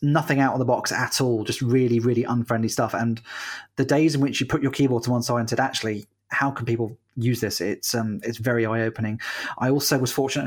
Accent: British